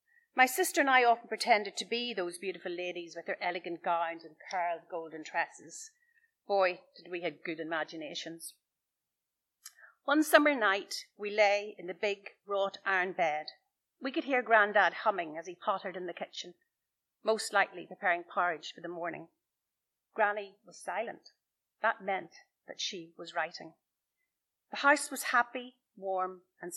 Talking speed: 155 wpm